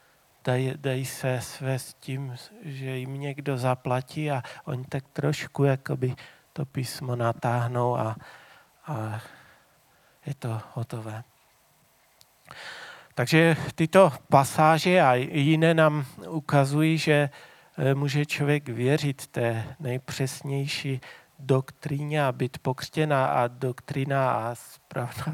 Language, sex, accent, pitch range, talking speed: Czech, male, native, 125-145 Hz, 100 wpm